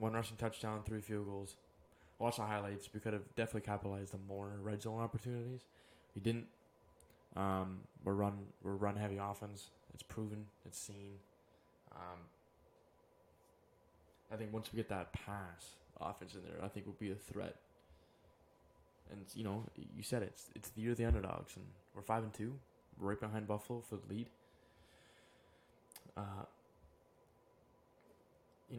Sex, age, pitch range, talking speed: male, 20-39, 95-110 Hz, 155 wpm